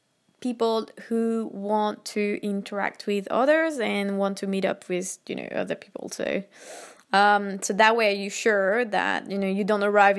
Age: 20-39